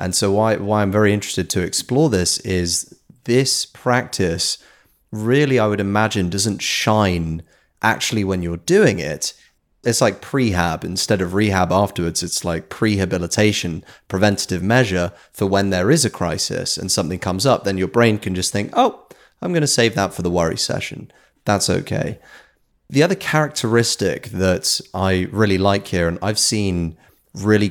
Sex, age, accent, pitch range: male, 30-49, British, 90-115 Hz